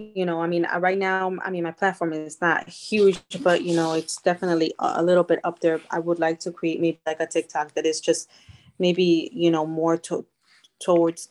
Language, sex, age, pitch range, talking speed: English, female, 20-39, 160-175 Hz, 210 wpm